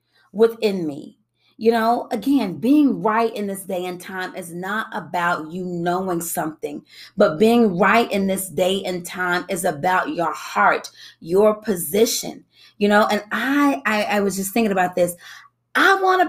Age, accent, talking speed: 30-49, American, 170 wpm